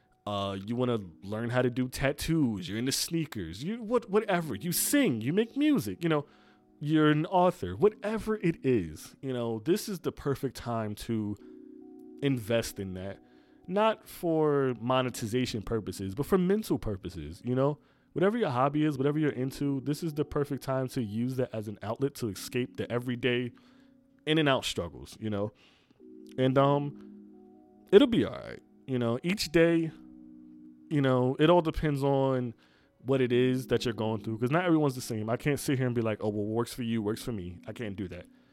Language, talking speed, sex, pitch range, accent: English, 195 wpm, male, 110-155 Hz, American